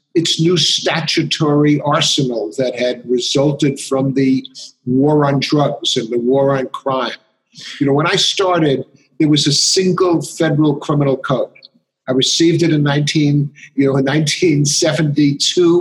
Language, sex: English, male